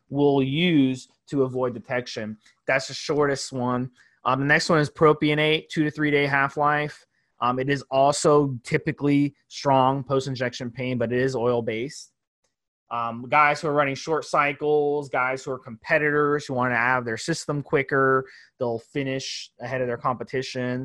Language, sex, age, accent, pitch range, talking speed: English, male, 20-39, American, 120-145 Hz, 155 wpm